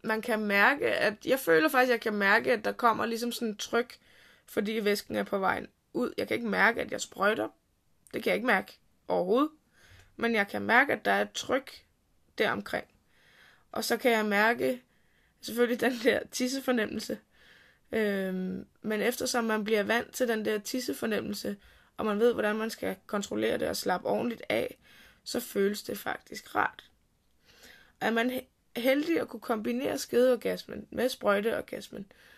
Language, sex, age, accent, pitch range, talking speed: Danish, female, 20-39, native, 205-245 Hz, 175 wpm